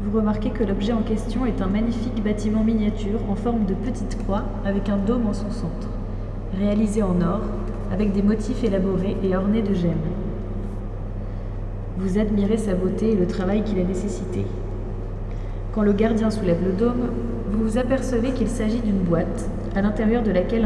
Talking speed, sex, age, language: 175 wpm, female, 20-39, French